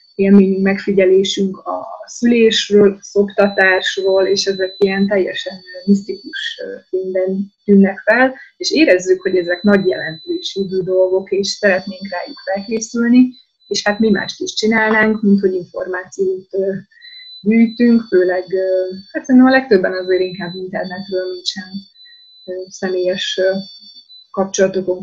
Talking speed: 110 wpm